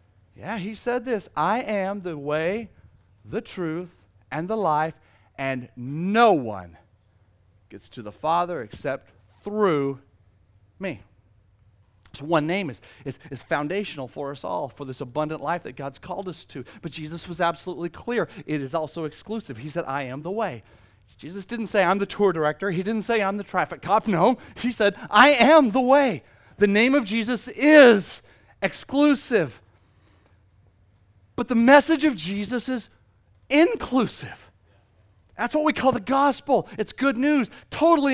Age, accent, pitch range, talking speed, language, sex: 40-59, American, 140-235 Hz, 160 wpm, English, male